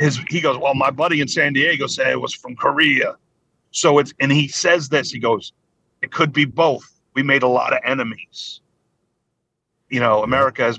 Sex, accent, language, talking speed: male, American, English, 200 wpm